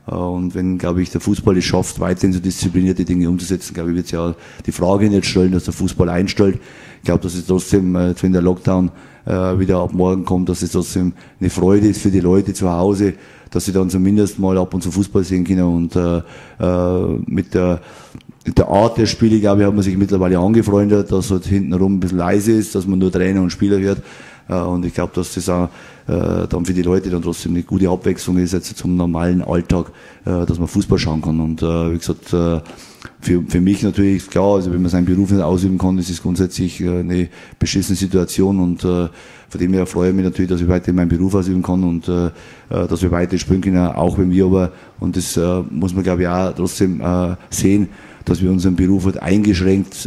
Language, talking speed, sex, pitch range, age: German, 225 wpm, male, 90-95 Hz, 30-49